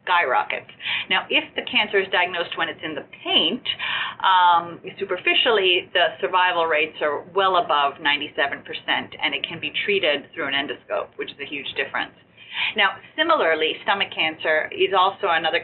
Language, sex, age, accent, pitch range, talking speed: English, female, 40-59, American, 170-225 Hz, 155 wpm